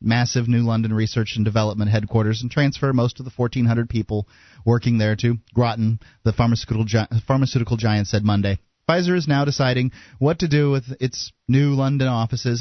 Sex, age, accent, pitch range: male, 30-49, American, 110-155 Hz